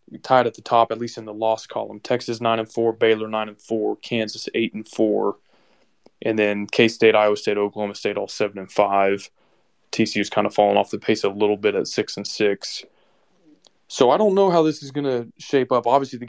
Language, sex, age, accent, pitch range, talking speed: English, male, 20-39, American, 105-120 Hz, 220 wpm